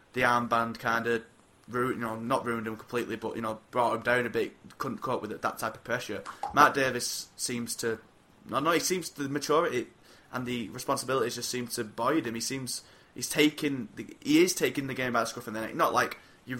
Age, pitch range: 20-39, 115-135 Hz